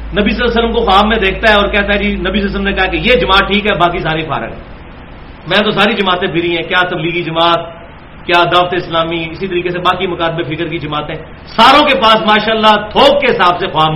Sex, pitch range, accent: male, 165-225 Hz, Indian